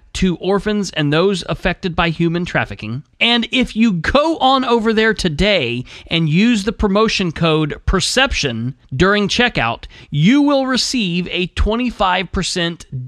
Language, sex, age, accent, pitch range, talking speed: English, male, 30-49, American, 130-190 Hz, 135 wpm